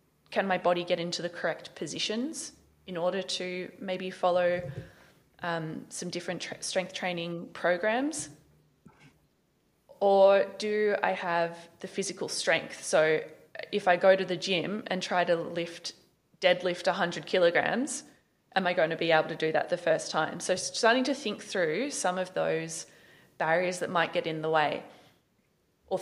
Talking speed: 155 wpm